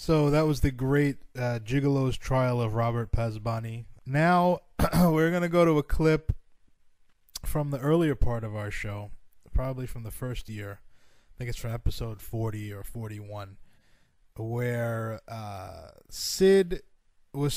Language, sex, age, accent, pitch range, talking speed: English, male, 20-39, American, 105-130 Hz, 145 wpm